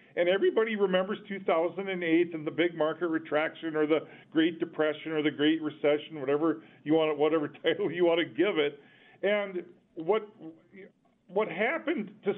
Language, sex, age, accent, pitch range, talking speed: English, male, 50-69, American, 165-210 Hz, 160 wpm